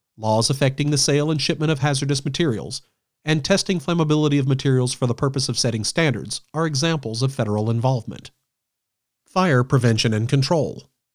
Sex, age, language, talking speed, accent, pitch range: male, 40-59, English, 155 wpm, American, 120-155 Hz